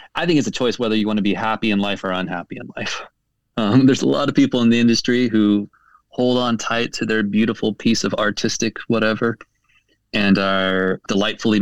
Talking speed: 205 wpm